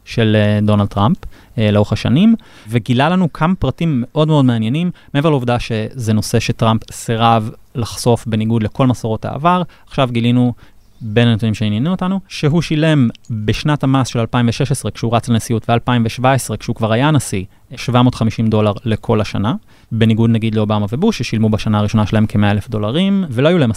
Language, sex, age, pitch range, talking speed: Hebrew, male, 20-39, 110-135 Hz, 155 wpm